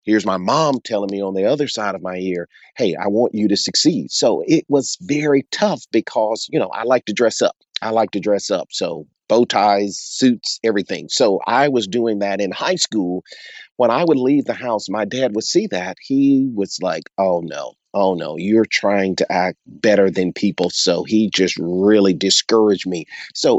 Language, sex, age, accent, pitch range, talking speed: English, male, 40-59, American, 95-110 Hz, 205 wpm